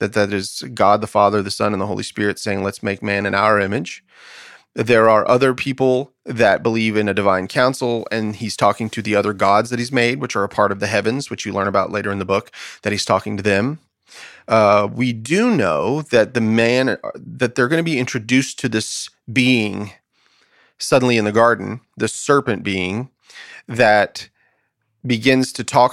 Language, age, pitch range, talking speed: English, 30-49, 105-130 Hz, 200 wpm